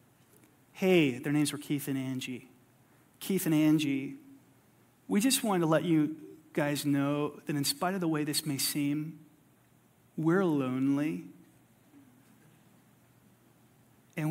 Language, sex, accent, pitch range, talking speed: English, male, American, 155-205 Hz, 125 wpm